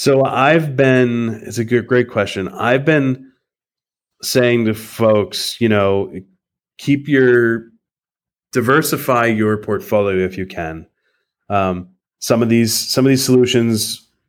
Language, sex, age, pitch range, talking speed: English, male, 30-49, 105-125 Hz, 130 wpm